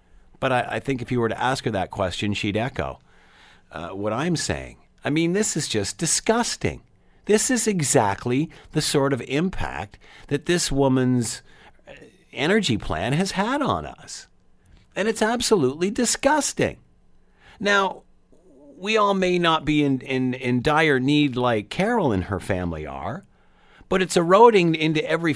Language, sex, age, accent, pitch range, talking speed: English, male, 50-69, American, 130-190 Hz, 155 wpm